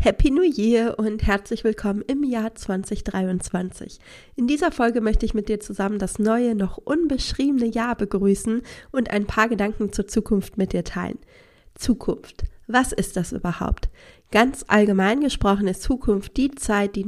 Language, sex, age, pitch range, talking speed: German, female, 30-49, 200-240 Hz, 160 wpm